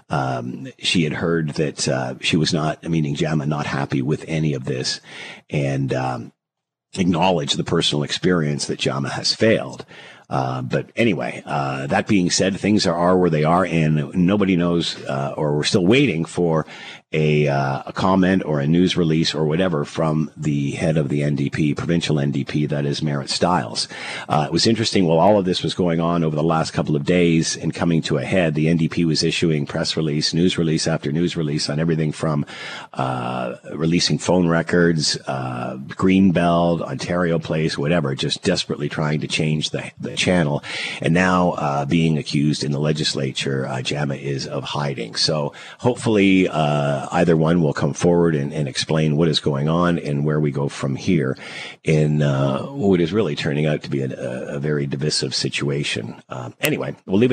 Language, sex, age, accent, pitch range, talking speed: English, male, 50-69, American, 75-90 Hz, 185 wpm